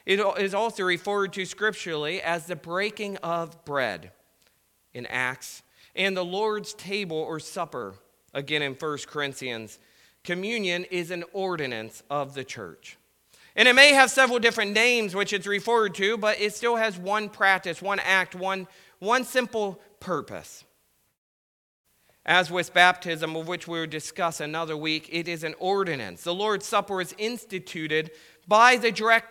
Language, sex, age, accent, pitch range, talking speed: English, male, 40-59, American, 150-200 Hz, 155 wpm